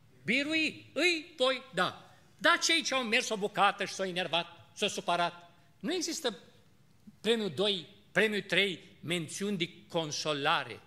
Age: 50-69